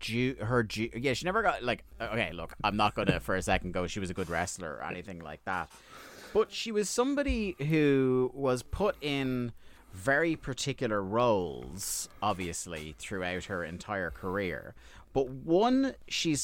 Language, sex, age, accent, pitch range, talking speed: English, male, 30-49, British, 90-115 Hz, 165 wpm